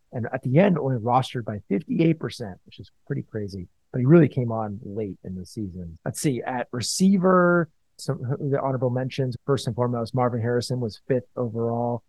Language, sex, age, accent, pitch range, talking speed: English, male, 30-49, American, 110-125 Hz, 185 wpm